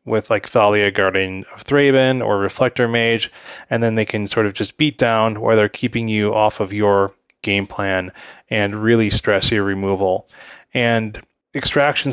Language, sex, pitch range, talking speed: English, male, 105-125 Hz, 165 wpm